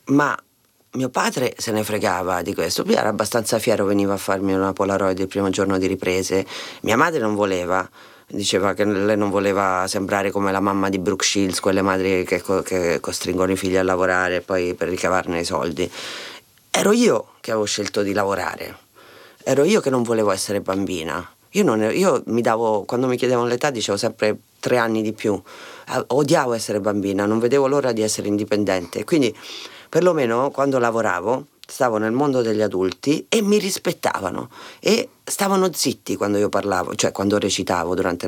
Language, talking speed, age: Italian, 180 wpm, 30-49